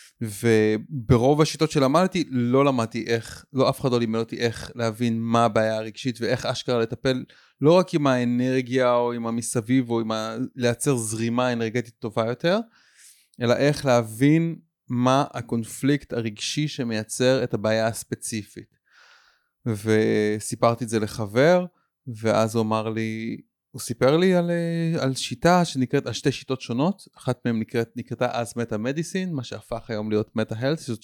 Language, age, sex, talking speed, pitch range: Hebrew, 30-49, male, 150 wpm, 115-145 Hz